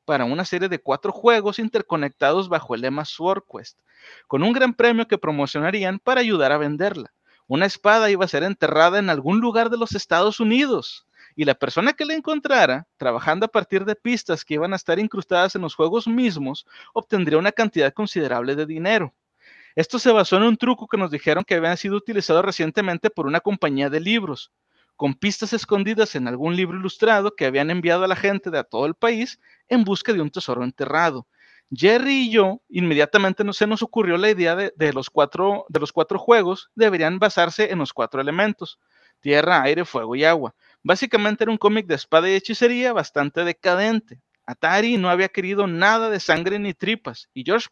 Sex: male